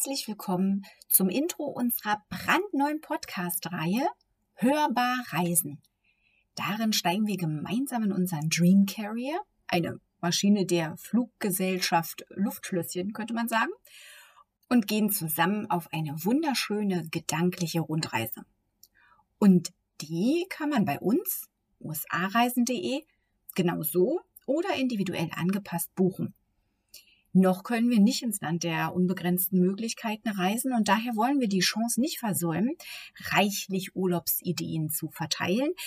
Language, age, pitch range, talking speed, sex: German, 30-49, 175-245 Hz, 115 wpm, female